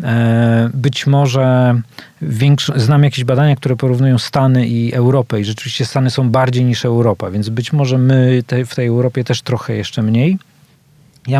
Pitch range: 115-135 Hz